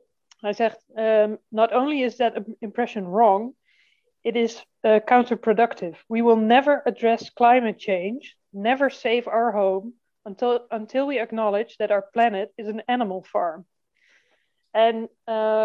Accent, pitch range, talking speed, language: Dutch, 200-235 Hz, 135 wpm, Dutch